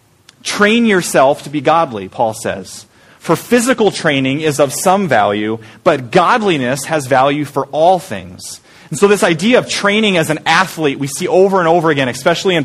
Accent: American